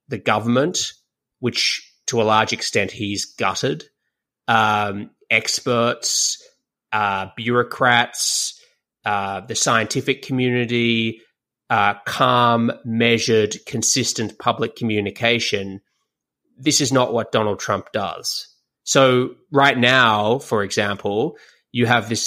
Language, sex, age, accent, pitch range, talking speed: English, male, 30-49, Australian, 100-120 Hz, 100 wpm